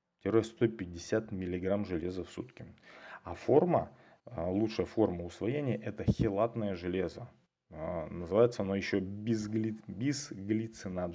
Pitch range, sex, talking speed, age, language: 90-110 Hz, male, 90 wpm, 30-49, Russian